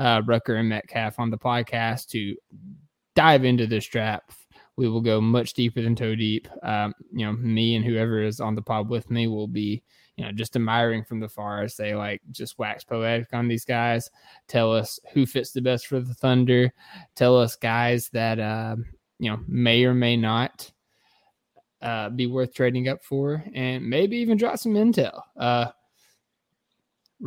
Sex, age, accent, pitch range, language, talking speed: male, 20-39, American, 110-125 Hz, English, 185 wpm